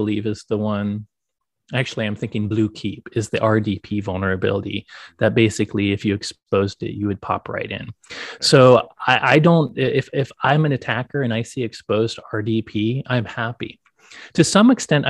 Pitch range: 105-135 Hz